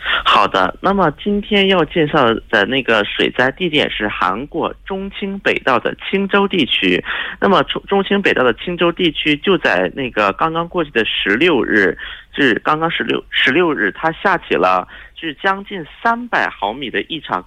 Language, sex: Korean, male